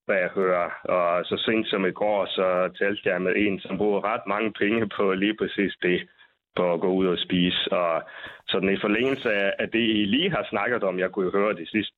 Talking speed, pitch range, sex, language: 225 wpm, 95-110 Hz, male, Danish